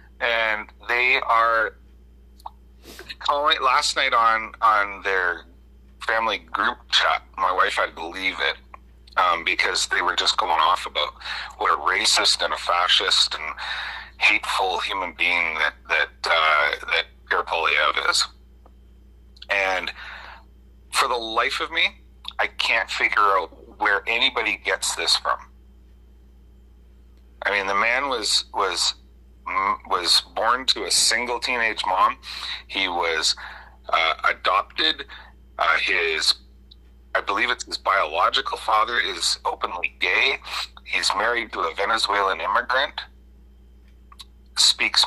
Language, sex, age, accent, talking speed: English, male, 40-59, American, 125 wpm